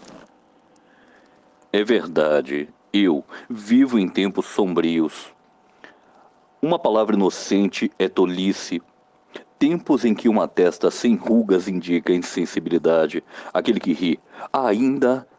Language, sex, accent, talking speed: Portuguese, male, Brazilian, 100 wpm